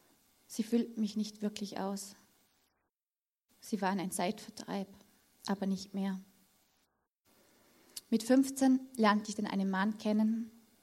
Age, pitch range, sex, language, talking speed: 20-39, 200-230 Hz, female, German, 115 wpm